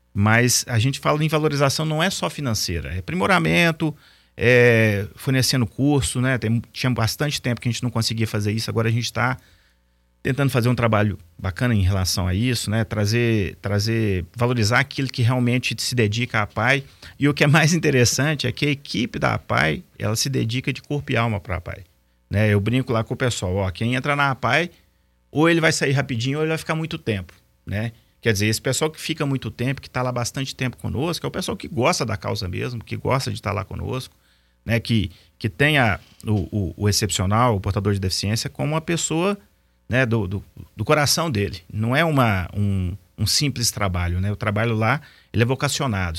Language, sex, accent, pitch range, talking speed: Portuguese, male, Brazilian, 100-130 Hz, 210 wpm